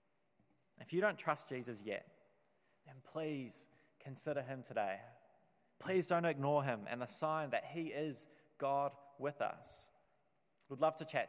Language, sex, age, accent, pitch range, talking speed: English, male, 20-39, Australian, 115-150 Hz, 150 wpm